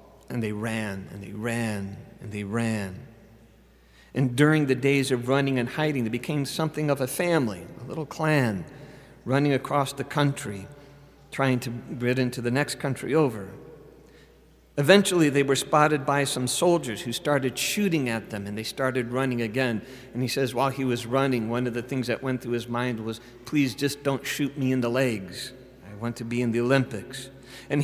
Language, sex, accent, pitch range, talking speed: English, male, American, 115-145 Hz, 190 wpm